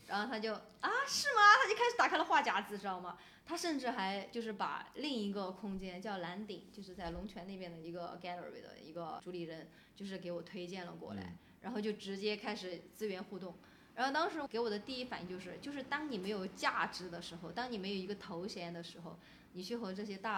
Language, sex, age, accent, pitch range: Chinese, female, 20-39, native, 175-215 Hz